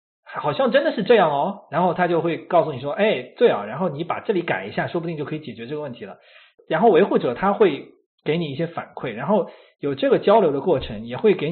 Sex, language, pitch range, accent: male, Chinese, 150-225 Hz, native